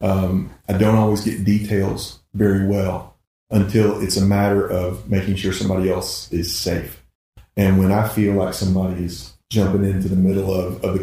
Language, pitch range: English, 95-105 Hz